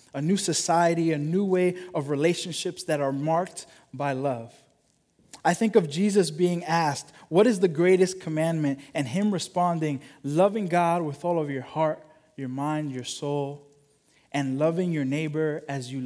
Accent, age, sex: American, 20-39, male